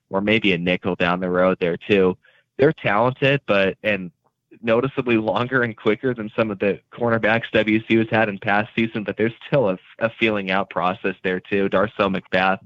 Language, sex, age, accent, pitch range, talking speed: English, male, 20-39, American, 95-115 Hz, 190 wpm